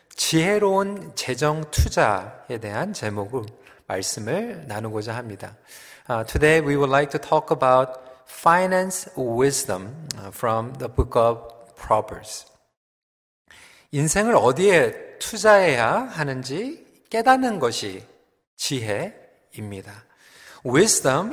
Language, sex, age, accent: Korean, male, 40-59, native